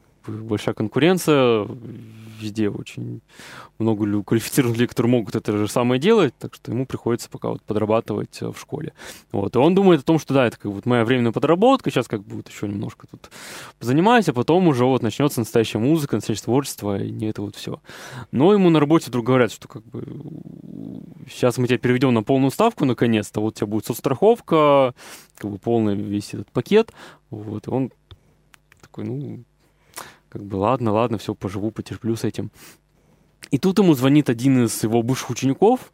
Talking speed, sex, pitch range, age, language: 185 wpm, male, 110-135 Hz, 20-39, Russian